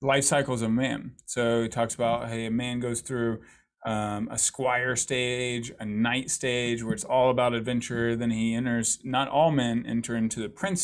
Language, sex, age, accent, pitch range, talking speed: English, male, 30-49, American, 120-145 Hz, 195 wpm